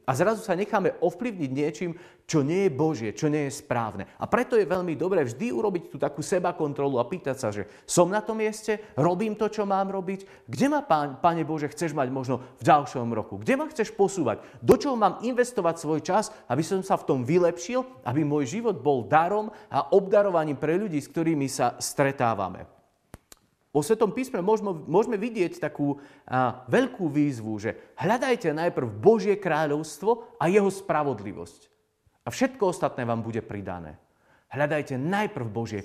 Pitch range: 120-190 Hz